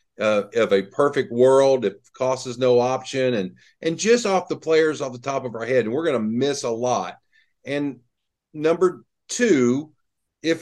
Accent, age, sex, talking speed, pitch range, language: American, 50-69, male, 185 wpm, 105-160 Hz, English